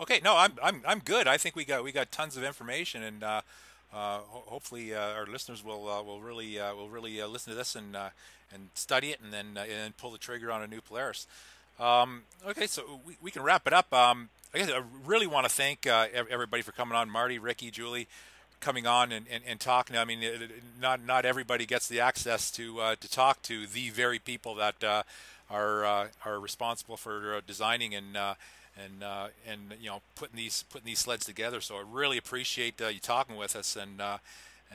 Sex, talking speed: male, 225 wpm